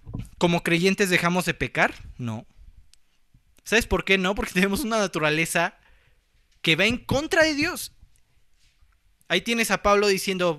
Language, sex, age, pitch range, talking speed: Spanish, male, 20-39, 165-220 Hz, 140 wpm